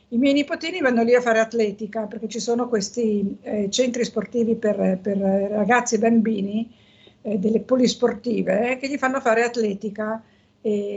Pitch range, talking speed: 215-250 Hz, 160 wpm